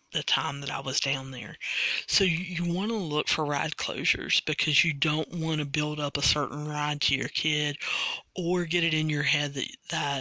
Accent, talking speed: American, 210 wpm